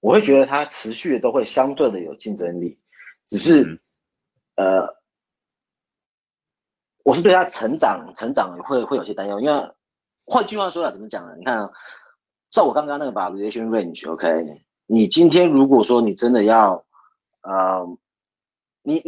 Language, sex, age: Chinese, male, 30-49